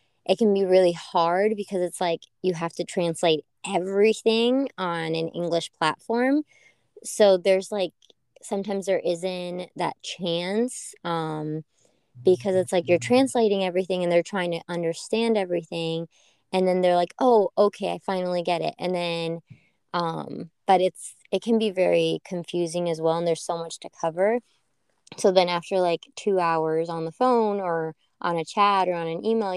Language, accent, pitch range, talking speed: English, American, 165-205 Hz, 170 wpm